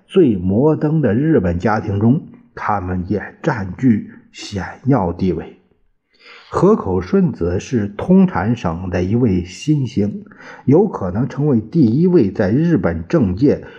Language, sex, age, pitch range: Chinese, male, 50-69, 95-130 Hz